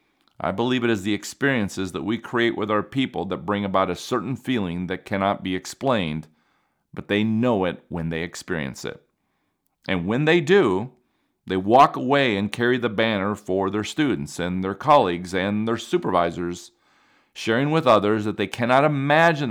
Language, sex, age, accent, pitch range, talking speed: English, male, 40-59, American, 90-130 Hz, 175 wpm